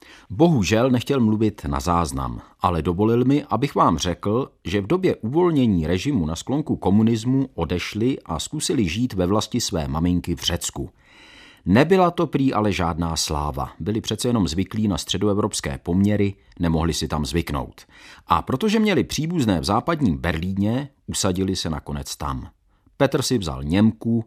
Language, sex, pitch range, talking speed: Czech, male, 80-115 Hz, 150 wpm